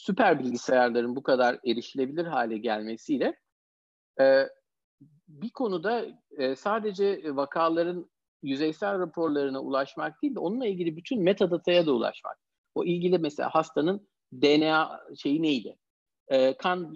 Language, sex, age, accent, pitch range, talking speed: Turkish, male, 50-69, native, 145-180 Hz, 105 wpm